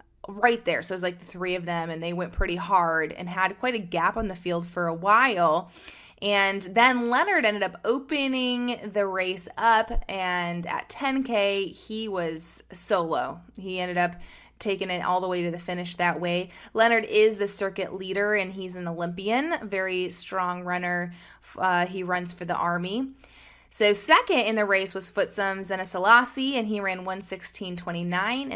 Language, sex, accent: English, female, American